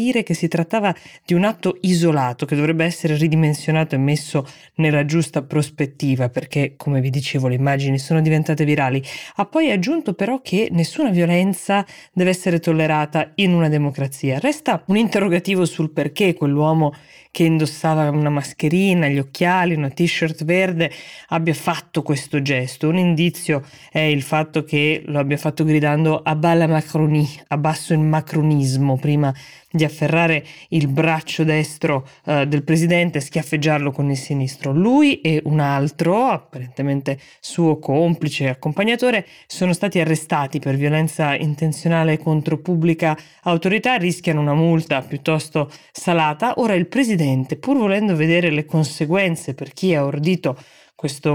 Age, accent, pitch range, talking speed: 20-39, native, 145-175 Hz, 145 wpm